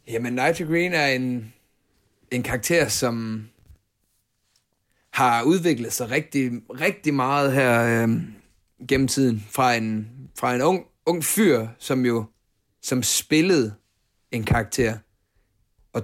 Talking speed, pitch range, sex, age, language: 120 wpm, 110-130 Hz, male, 30-49, Danish